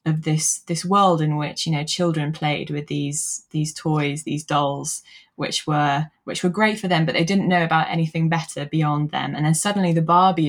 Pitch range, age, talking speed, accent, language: 150-170 Hz, 20-39, 210 wpm, British, English